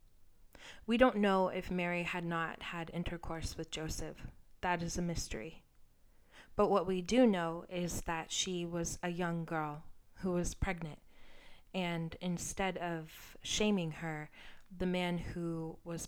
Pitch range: 165-190 Hz